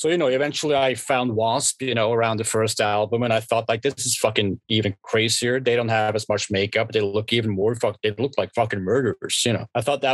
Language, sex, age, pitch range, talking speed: English, male, 30-49, 115-140 Hz, 255 wpm